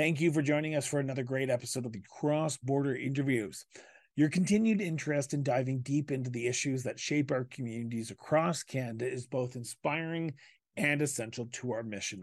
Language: English